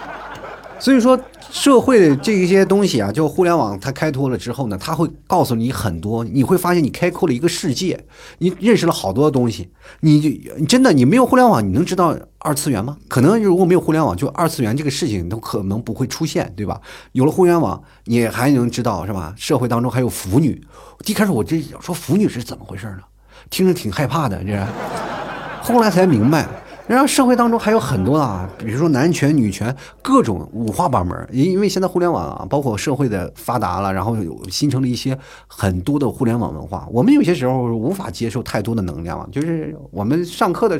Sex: male